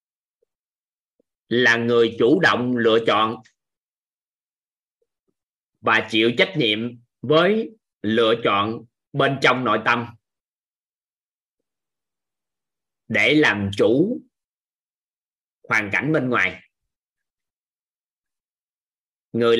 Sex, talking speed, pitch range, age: male, 75 wpm, 110-145 Hz, 20-39